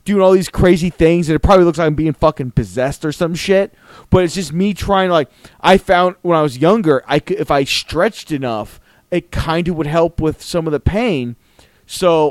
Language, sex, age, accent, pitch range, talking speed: English, male, 30-49, American, 130-180 Hz, 230 wpm